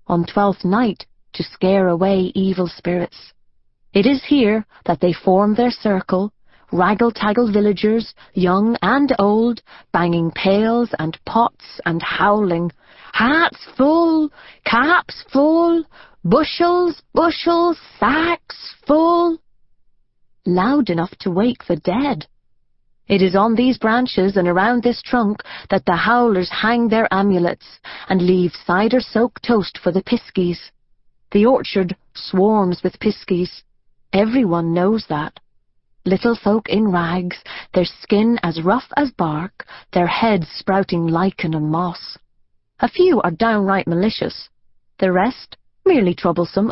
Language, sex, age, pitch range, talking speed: English, female, 30-49, 175-235 Hz, 125 wpm